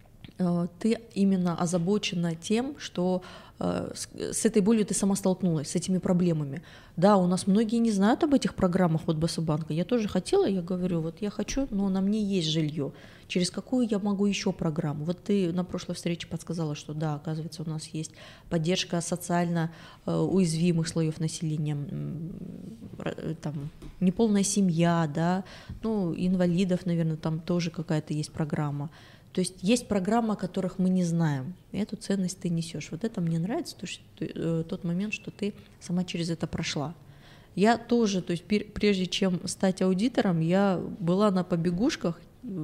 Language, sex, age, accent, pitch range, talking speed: Russian, female, 20-39, native, 165-200 Hz, 155 wpm